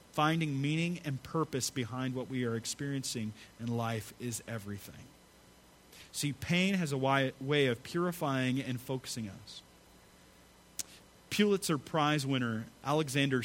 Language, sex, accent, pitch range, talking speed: English, male, American, 115-155 Hz, 125 wpm